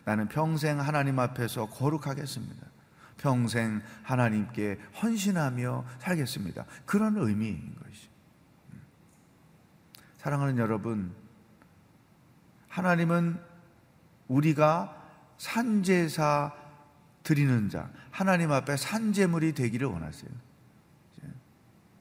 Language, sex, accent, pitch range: Korean, male, native, 115-160 Hz